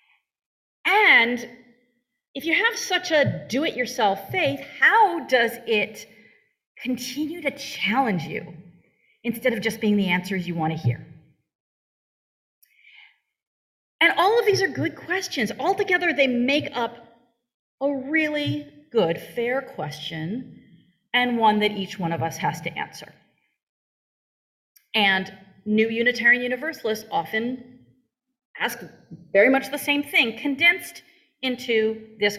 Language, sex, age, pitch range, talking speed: English, female, 40-59, 195-295 Hz, 120 wpm